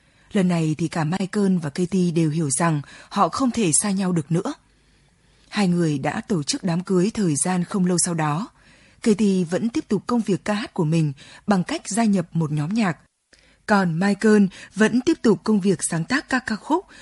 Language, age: Vietnamese, 20-39